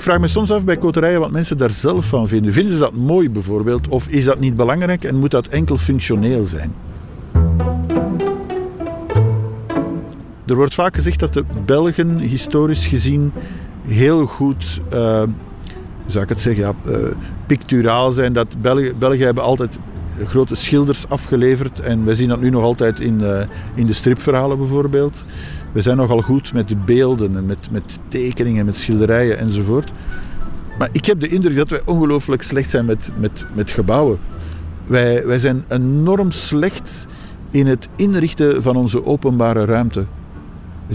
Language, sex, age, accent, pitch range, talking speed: Dutch, male, 50-69, Dutch, 100-140 Hz, 155 wpm